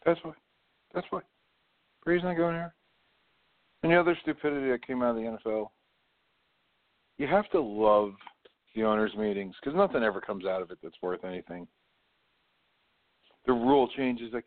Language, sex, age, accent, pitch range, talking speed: English, male, 50-69, American, 110-140 Hz, 160 wpm